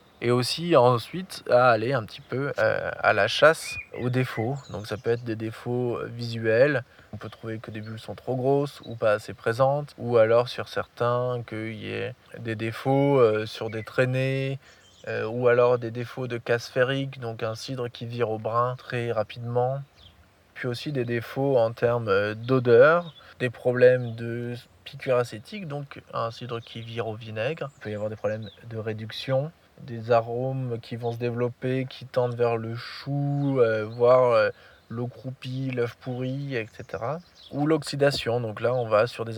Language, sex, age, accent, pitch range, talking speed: French, male, 20-39, French, 115-135 Hz, 180 wpm